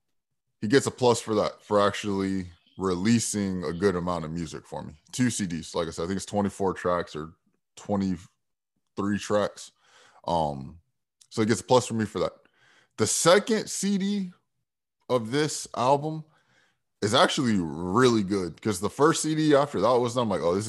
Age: 20-39